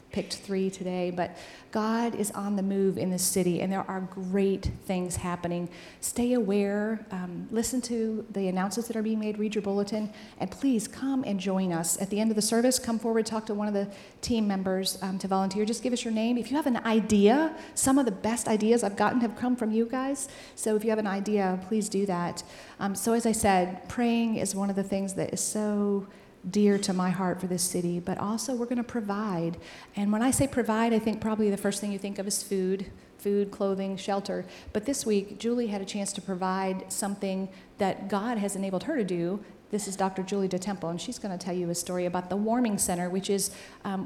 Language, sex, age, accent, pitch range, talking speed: English, female, 40-59, American, 190-220 Hz, 230 wpm